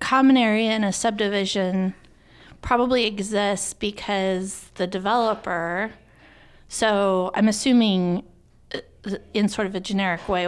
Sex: female